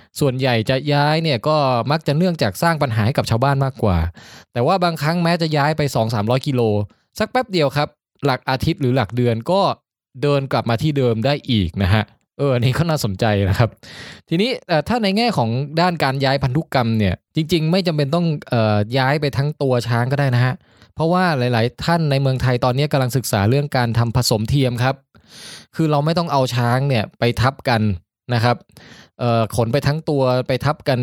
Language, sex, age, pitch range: Thai, male, 20-39, 115-145 Hz